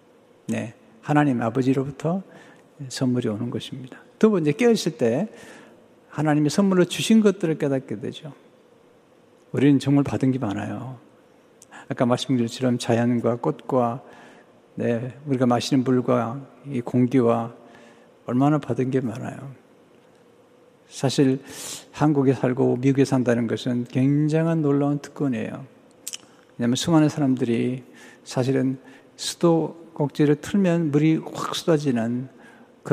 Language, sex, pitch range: Chinese, male, 120-150 Hz